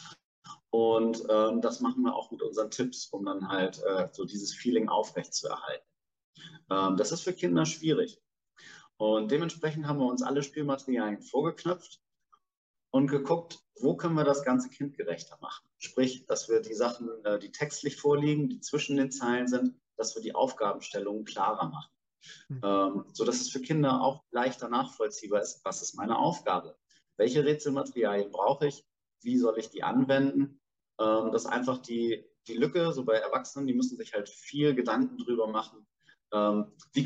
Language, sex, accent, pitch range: German, male, German, 115-155 Hz